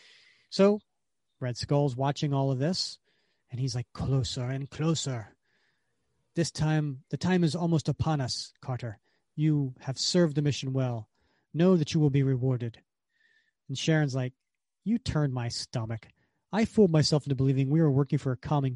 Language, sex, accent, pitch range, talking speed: English, male, American, 135-165 Hz, 165 wpm